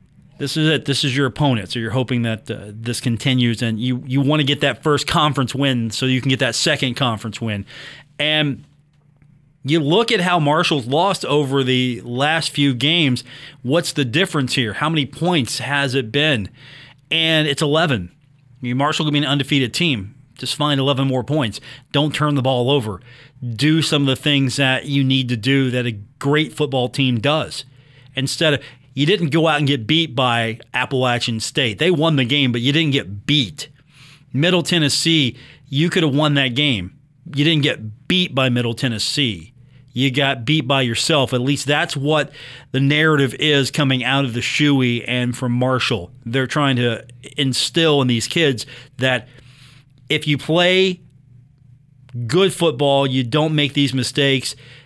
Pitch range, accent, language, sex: 125-150 Hz, American, English, male